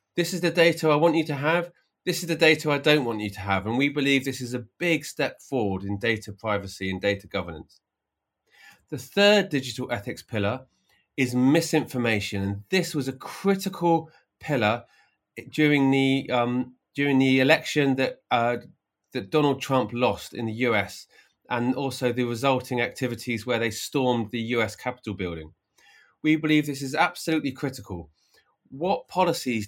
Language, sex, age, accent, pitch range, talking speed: English, male, 30-49, British, 115-150 Hz, 165 wpm